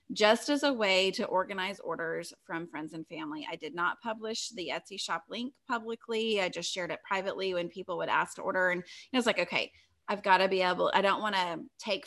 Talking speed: 230 wpm